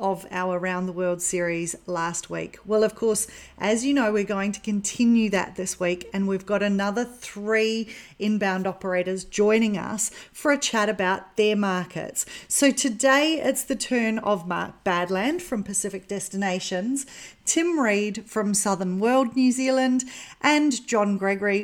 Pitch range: 190-245 Hz